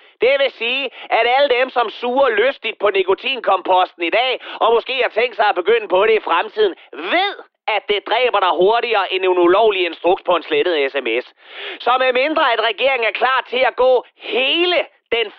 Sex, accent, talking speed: male, native, 195 wpm